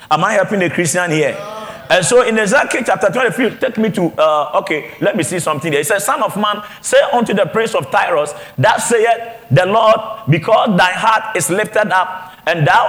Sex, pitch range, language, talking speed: male, 175-230 Hz, English, 210 wpm